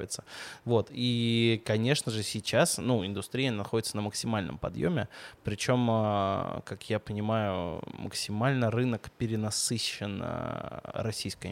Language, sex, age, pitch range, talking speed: Russian, male, 20-39, 100-120 Hz, 100 wpm